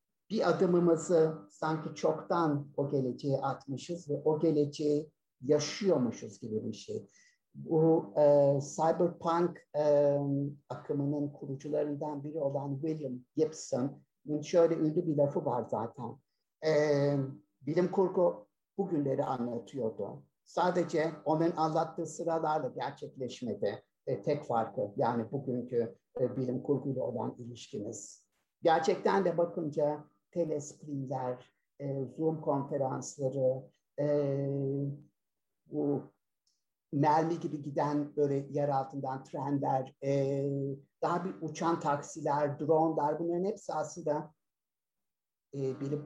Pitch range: 140-160 Hz